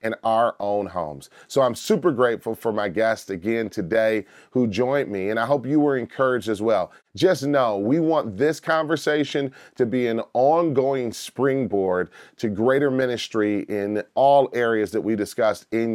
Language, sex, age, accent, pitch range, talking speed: English, male, 30-49, American, 110-145 Hz, 170 wpm